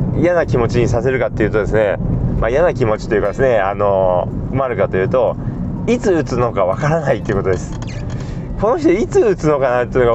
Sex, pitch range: male, 120-160 Hz